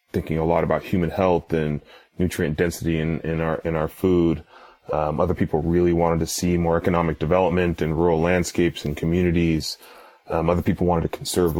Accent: American